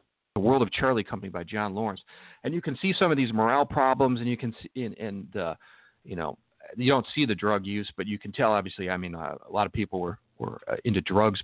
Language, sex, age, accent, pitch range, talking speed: English, male, 50-69, American, 105-125 Hz, 255 wpm